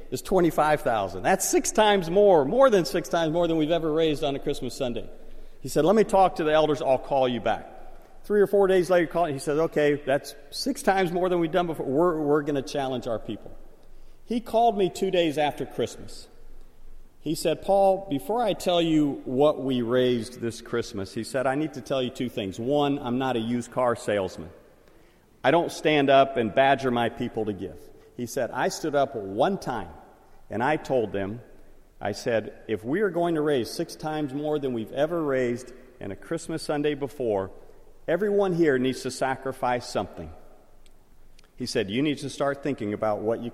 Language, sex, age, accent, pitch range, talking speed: English, male, 50-69, American, 125-170 Hz, 200 wpm